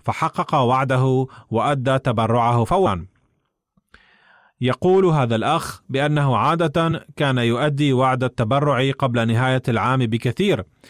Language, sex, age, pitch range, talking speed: Arabic, male, 30-49, 120-150 Hz, 100 wpm